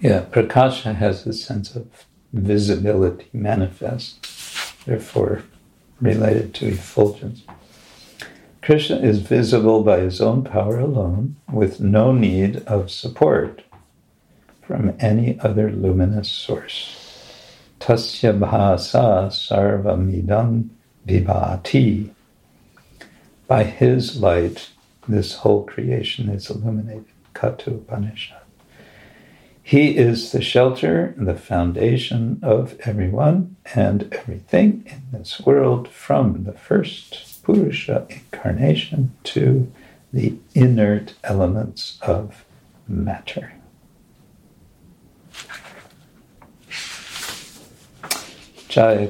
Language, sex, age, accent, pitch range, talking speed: English, male, 60-79, American, 100-125 Hz, 85 wpm